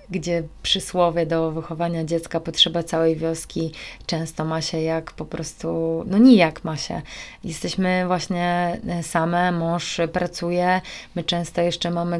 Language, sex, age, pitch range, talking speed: Polish, female, 20-39, 170-185 Hz, 135 wpm